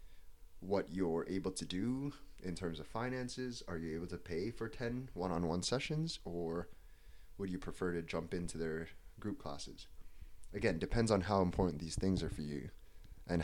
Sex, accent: male, American